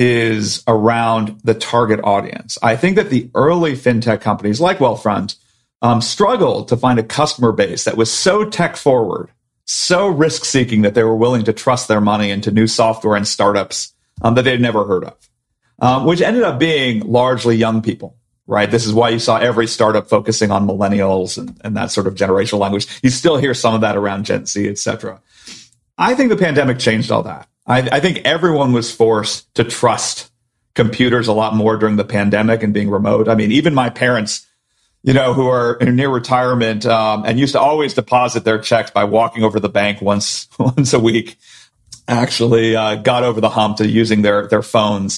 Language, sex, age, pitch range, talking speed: English, male, 40-59, 105-125 Hz, 195 wpm